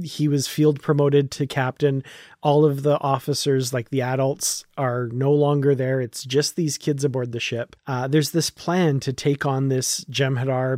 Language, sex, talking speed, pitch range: English, male, 185 wpm, 135-175 Hz